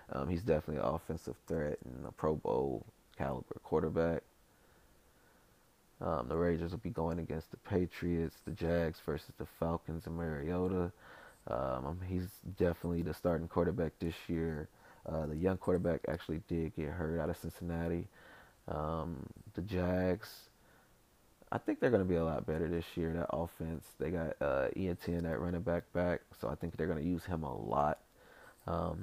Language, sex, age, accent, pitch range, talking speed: English, male, 20-39, American, 80-90 Hz, 170 wpm